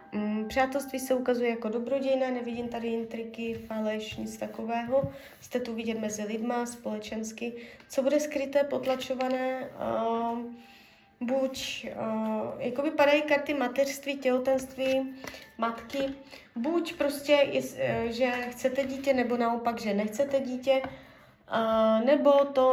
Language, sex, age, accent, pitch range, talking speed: Czech, female, 20-39, native, 215-255 Hz, 105 wpm